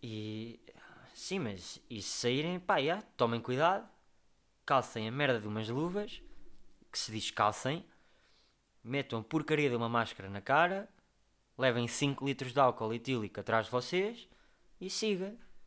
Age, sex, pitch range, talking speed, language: 20-39, male, 110-160 Hz, 145 wpm, Portuguese